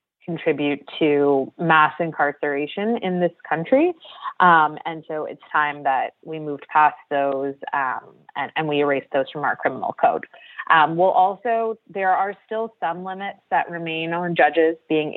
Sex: female